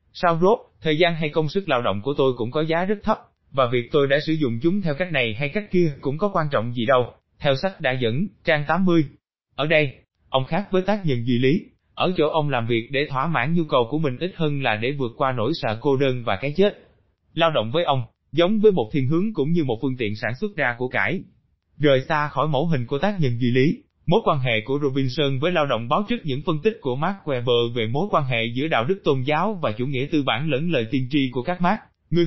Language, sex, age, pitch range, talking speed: Vietnamese, male, 20-39, 130-170 Hz, 265 wpm